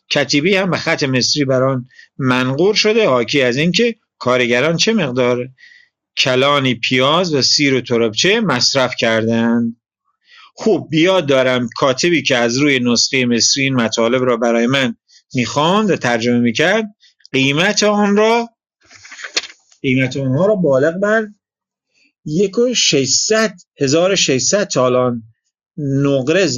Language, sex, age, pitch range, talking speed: Persian, male, 50-69, 125-175 Hz, 120 wpm